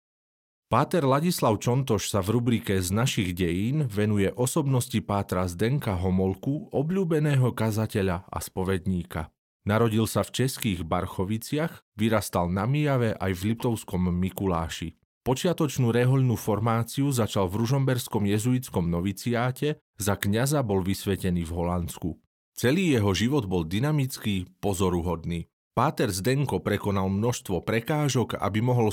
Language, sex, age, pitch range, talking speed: Slovak, male, 40-59, 95-125 Hz, 120 wpm